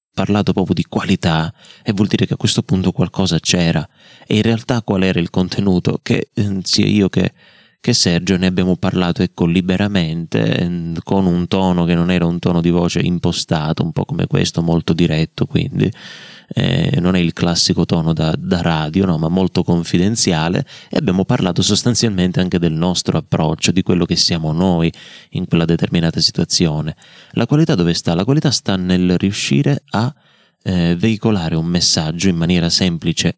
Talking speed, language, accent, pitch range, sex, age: 170 wpm, Italian, native, 85-100 Hz, male, 30-49